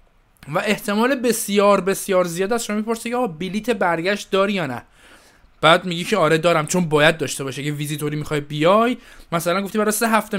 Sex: male